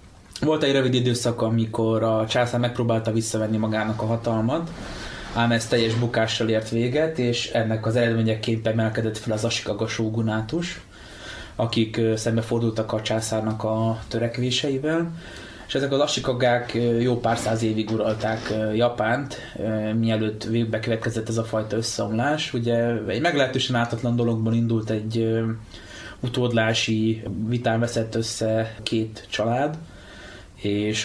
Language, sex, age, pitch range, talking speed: Hungarian, male, 20-39, 110-120 Hz, 125 wpm